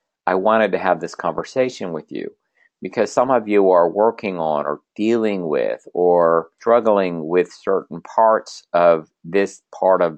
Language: English